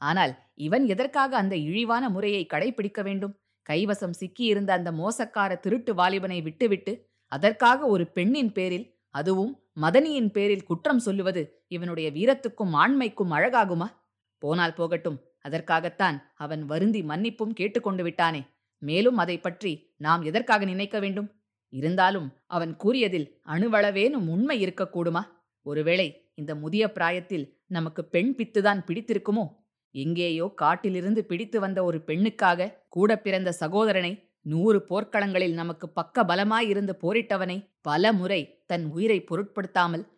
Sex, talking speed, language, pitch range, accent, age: female, 115 wpm, Tamil, 170-215 Hz, native, 20-39